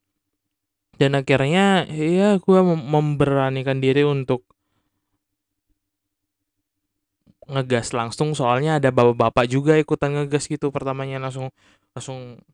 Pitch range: 105-150 Hz